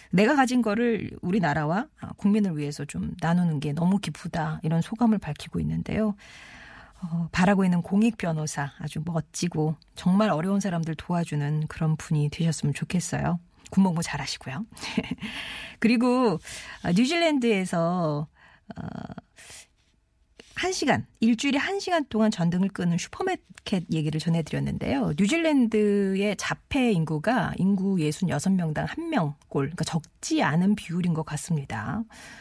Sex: female